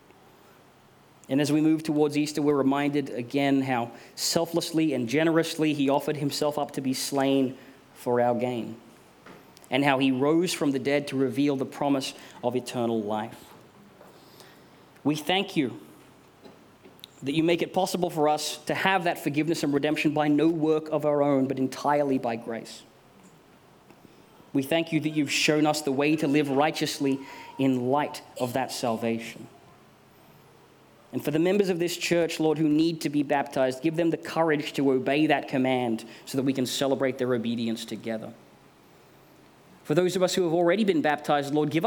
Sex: male